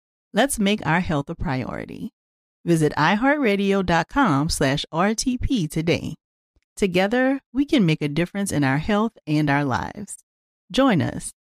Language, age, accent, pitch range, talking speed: English, 40-59, American, 150-225 Hz, 125 wpm